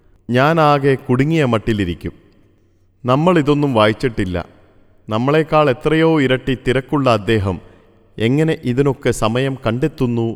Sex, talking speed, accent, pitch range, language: male, 95 wpm, native, 105-145 Hz, Malayalam